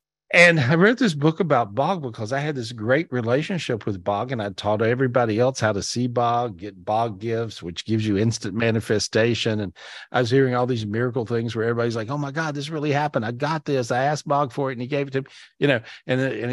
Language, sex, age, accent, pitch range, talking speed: English, male, 50-69, American, 105-135 Hz, 245 wpm